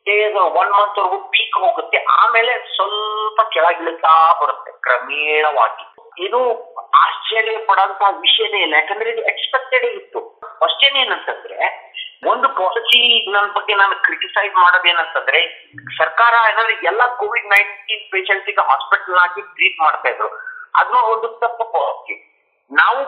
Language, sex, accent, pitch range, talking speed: Kannada, male, native, 200-270 Hz, 110 wpm